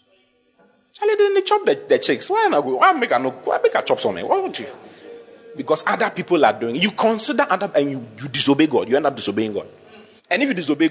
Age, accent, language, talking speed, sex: 40-59, Nigerian, English, 230 wpm, male